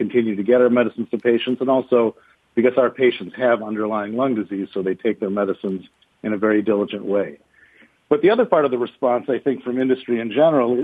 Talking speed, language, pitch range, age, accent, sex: 215 wpm, English, 110-135 Hz, 50-69, American, male